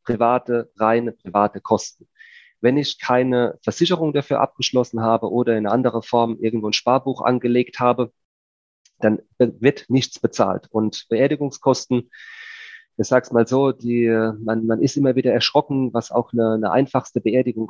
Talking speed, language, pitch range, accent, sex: 150 wpm, German, 115-130 Hz, German, male